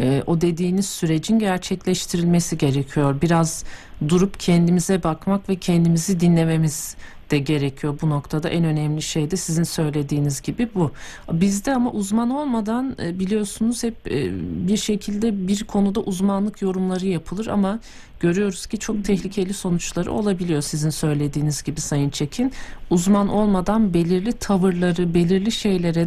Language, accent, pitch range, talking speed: Turkish, native, 160-205 Hz, 125 wpm